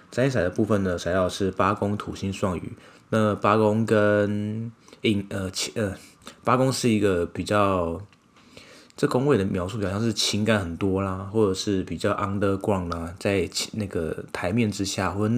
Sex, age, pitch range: male, 20-39, 95-110 Hz